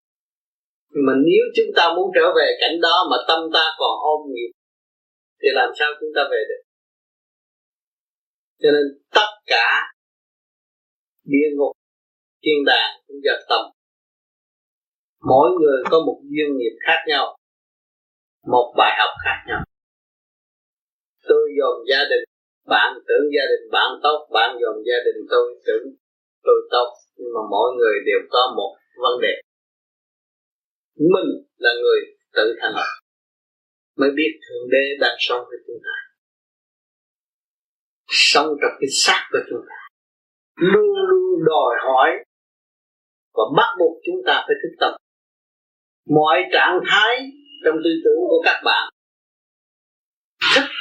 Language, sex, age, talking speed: Vietnamese, male, 30-49, 140 wpm